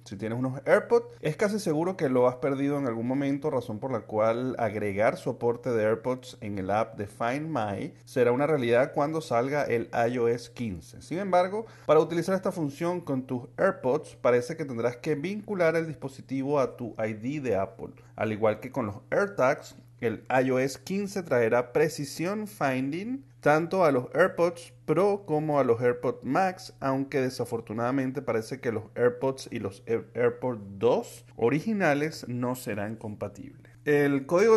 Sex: male